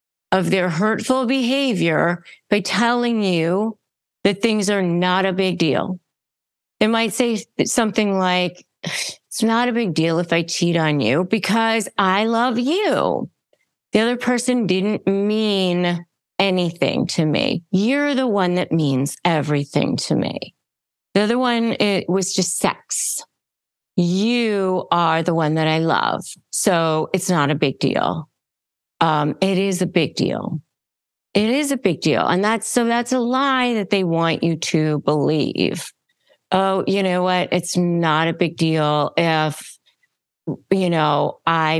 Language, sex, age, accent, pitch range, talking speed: English, female, 40-59, American, 165-215 Hz, 150 wpm